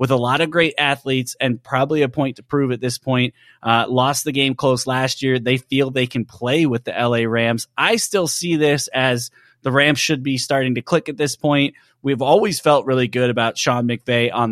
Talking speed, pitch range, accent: 225 wpm, 125-155 Hz, American